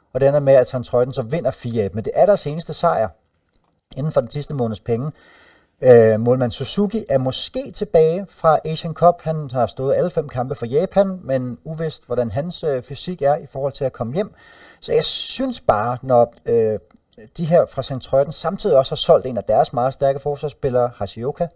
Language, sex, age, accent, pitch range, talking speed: Danish, male, 30-49, native, 120-160 Hz, 200 wpm